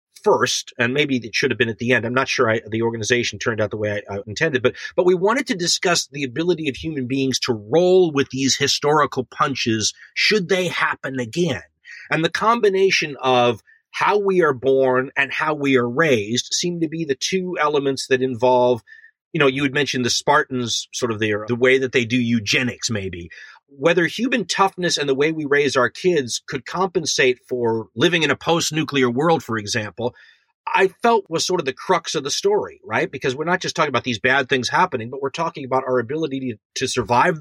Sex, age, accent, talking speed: male, 30-49, American, 215 wpm